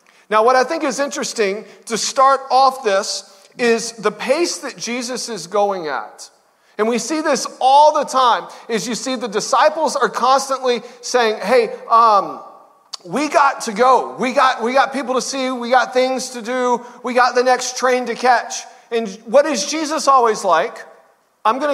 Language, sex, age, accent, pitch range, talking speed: English, male, 40-59, American, 215-290 Hz, 180 wpm